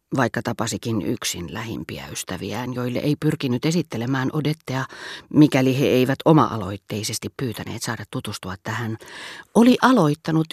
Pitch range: 120-160 Hz